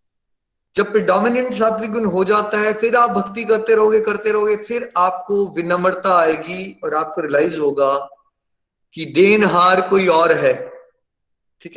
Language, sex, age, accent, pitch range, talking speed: Hindi, male, 30-49, native, 170-215 Hz, 155 wpm